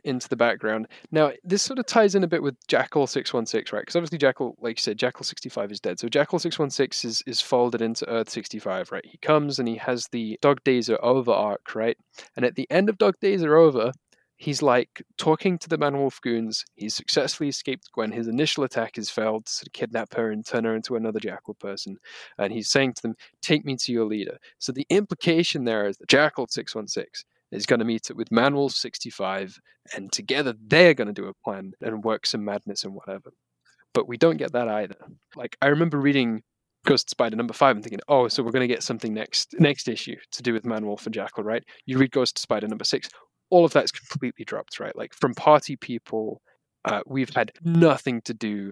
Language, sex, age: English, male, 20-39